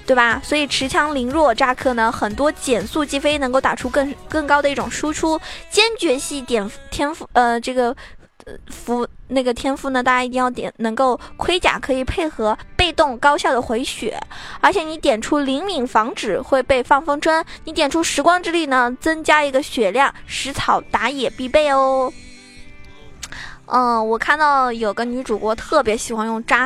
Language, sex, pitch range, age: Chinese, female, 225-285 Hz, 20-39